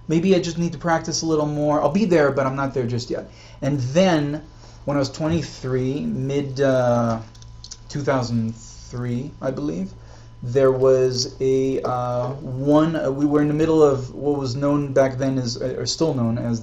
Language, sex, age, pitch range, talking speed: English, male, 30-49, 115-145 Hz, 185 wpm